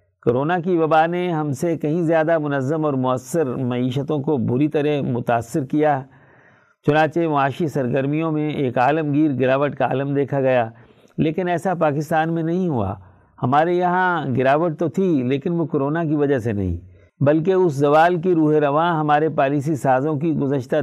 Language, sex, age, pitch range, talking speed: Urdu, male, 50-69, 125-160 Hz, 165 wpm